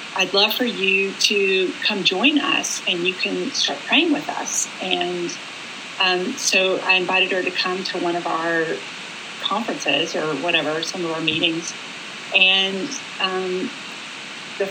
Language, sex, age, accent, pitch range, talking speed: English, female, 30-49, American, 175-235 Hz, 150 wpm